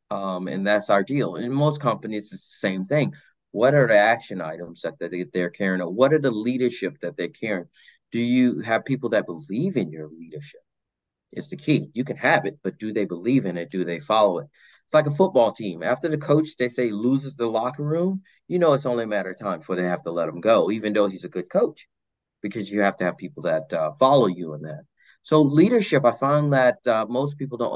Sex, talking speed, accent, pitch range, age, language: male, 235 wpm, American, 90-130 Hz, 30-49, English